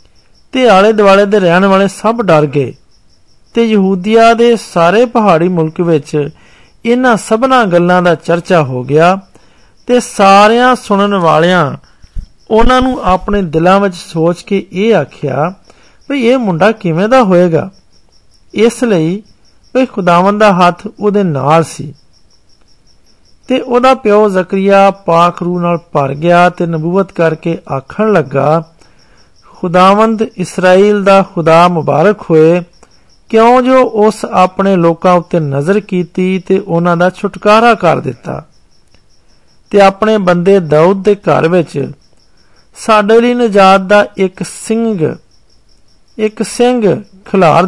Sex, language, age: male, Hindi, 50-69